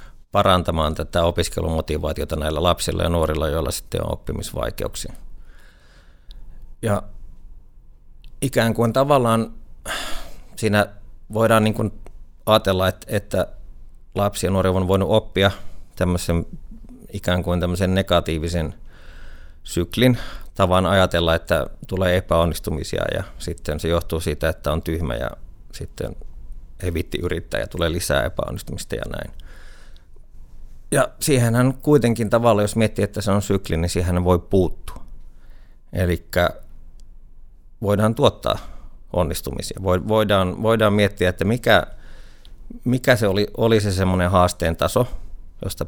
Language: Finnish